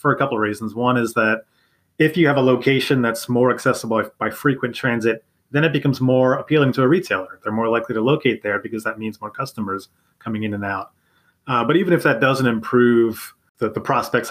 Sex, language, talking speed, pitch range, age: male, English, 220 wpm, 110-130 Hz, 30-49